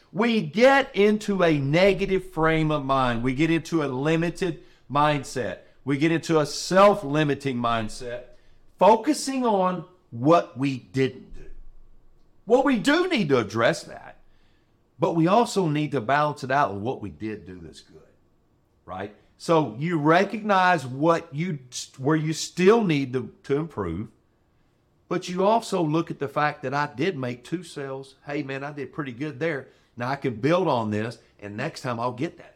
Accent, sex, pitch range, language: American, male, 125-180 Hz, English